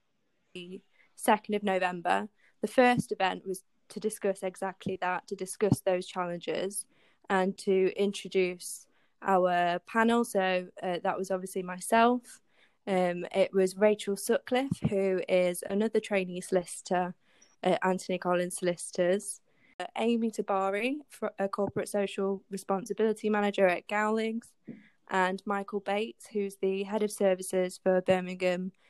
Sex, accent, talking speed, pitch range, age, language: female, British, 130 wpm, 185-205 Hz, 10-29, English